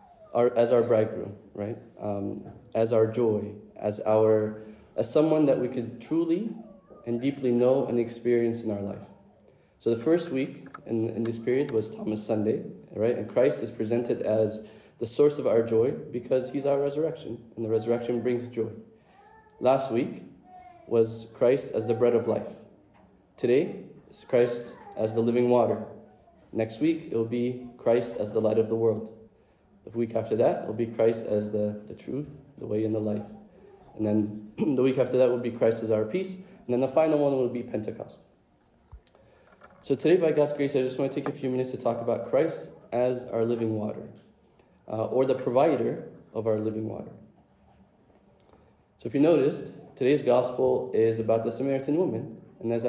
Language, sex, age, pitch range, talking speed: English, male, 20-39, 110-130 Hz, 185 wpm